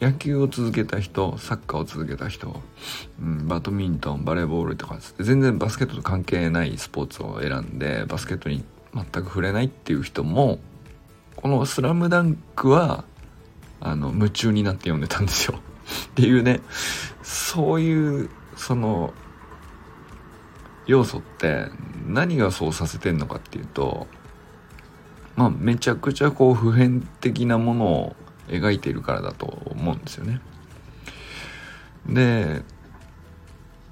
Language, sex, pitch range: Japanese, male, 85-130 Hz